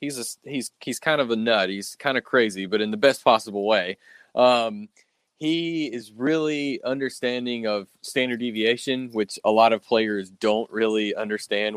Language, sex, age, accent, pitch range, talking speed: English, male, 20-39, American, 105-125 Hz, 175 wpm